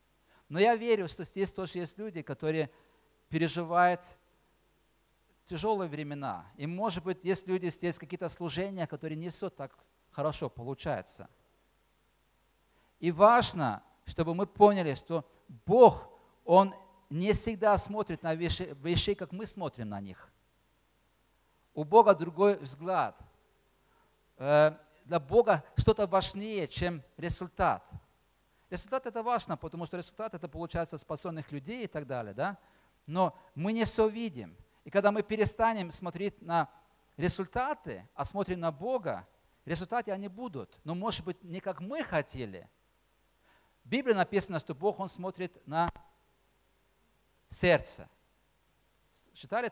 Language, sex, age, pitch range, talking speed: Russian, male, 40-59, 155-200 Hz, 130 wpm